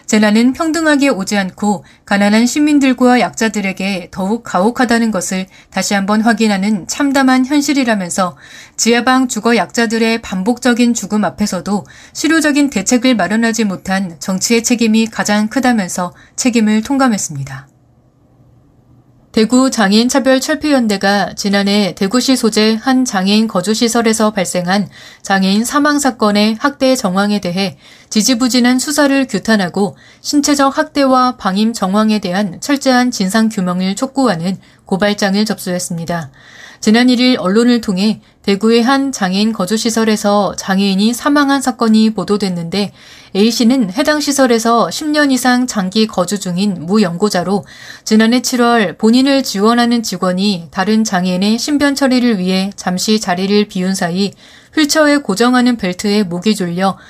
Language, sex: Korean, female